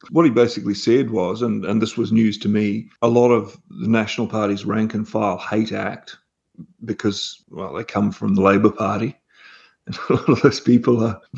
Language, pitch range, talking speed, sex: English, 110-120 Hz, 200 wpm, male